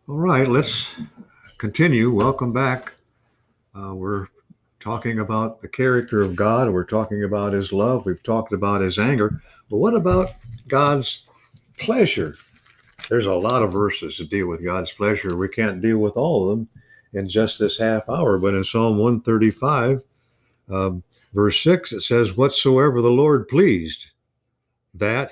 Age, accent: 60-79, American